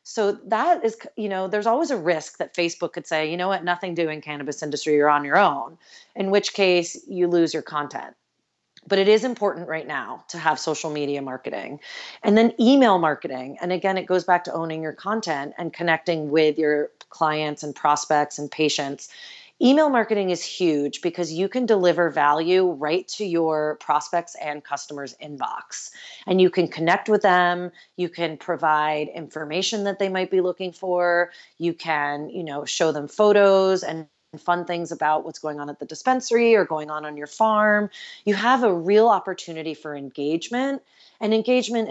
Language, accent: English, American